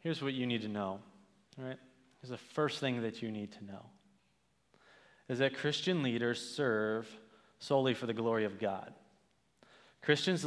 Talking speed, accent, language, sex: 160 wpm, American, English, male